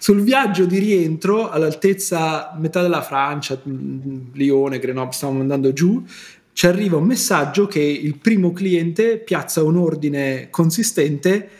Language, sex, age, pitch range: Italian, male, 30-49, 145-190 Hz